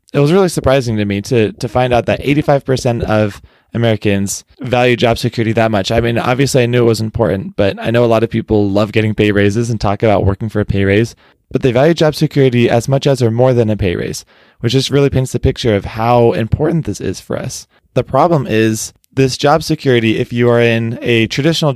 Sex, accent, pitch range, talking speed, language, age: male, American, 110-130 Hz, 235 wpm, English, 20-39